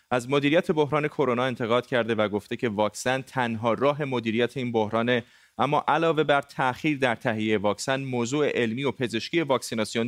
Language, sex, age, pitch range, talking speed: Persian, male, 30-49, 115-145 Hz, 160 wpm